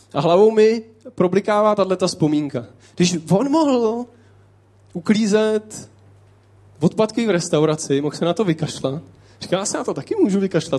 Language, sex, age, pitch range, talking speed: Czech, male, 20-39, 140-210 Hz, 155 wpm